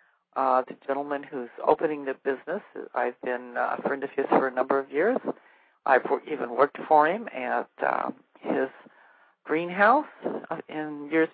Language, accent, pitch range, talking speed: English, American, 145-205 Hz, 165 wpm